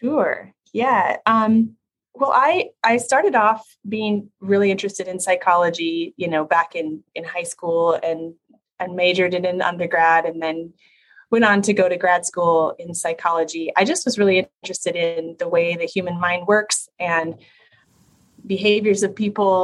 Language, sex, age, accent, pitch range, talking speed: English, female, 20-39, American, 175-220 Hz, 160 wpm